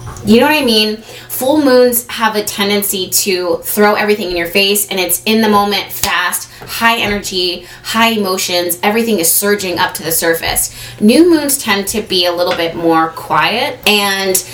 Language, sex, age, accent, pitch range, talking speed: English, female, 20-39, American, 175-220 Hz, 180 wpm